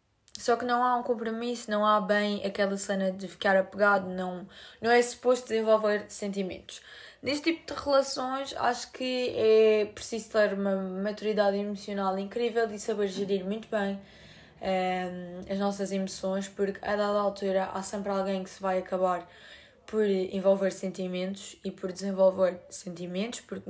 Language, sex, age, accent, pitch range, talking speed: Portuguese, female, 20-39, Brazilian, 195-230 Hz, 150 wpm